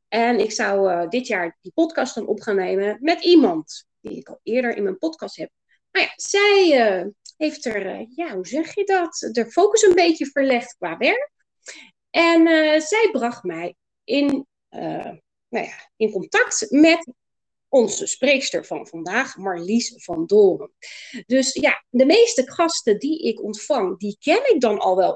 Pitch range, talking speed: 235-335 Hz, 170 wpm